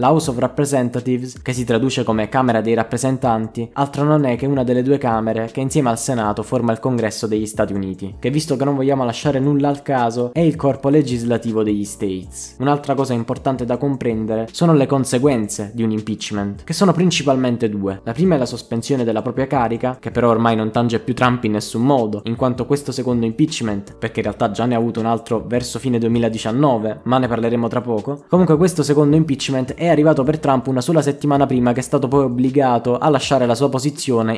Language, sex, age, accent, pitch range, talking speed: Italian, male, 20-39, native, 115-140 Hz, 215 wpm